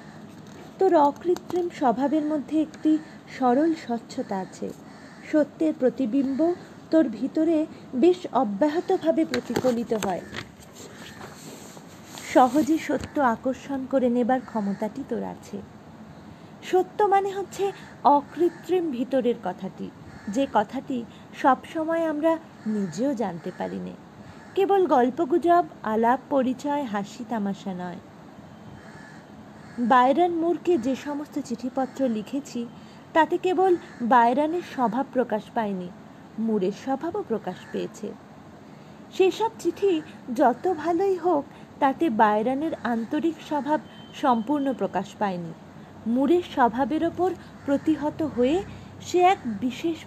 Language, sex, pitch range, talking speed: Bengali, female, 225-315 Hz, 100 wpm